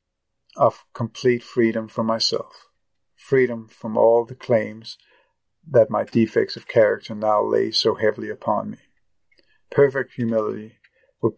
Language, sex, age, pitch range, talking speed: English, male, 50-69, 110-120 Hz, 125 wpm